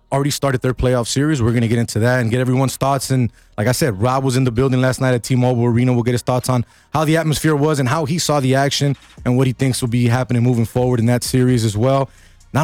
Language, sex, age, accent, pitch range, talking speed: English, male, 20-39, American, 125-150 Hz, 280 wpm